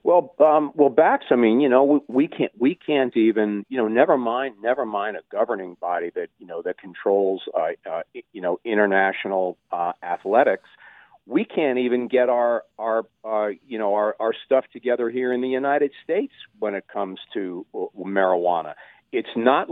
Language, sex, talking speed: English, male, 185 wpm